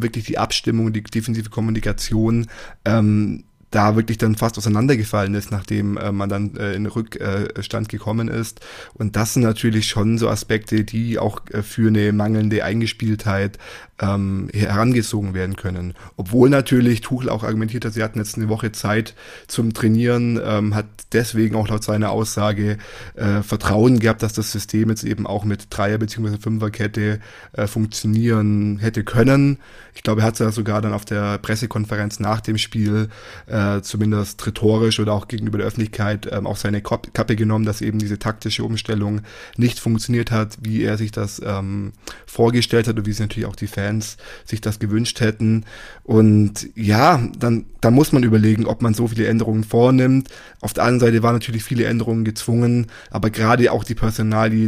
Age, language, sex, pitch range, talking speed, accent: 20-39, German, male, 105-115 Hz, 175 wpm, German